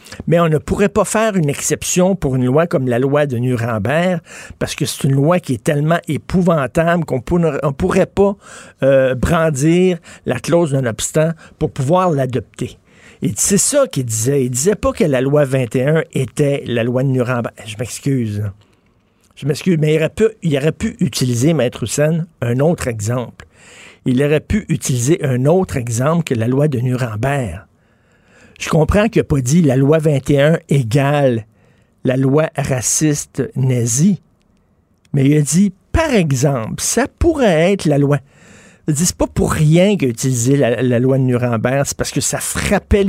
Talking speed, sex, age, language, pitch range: 190 wpm, male, 60-79, French, 125-165 Hz